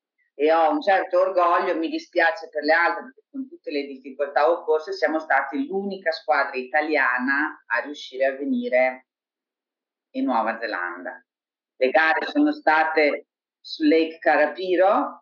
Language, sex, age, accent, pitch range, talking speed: Italian, female, 40-59, native, 125-160 Hz, 140 wpm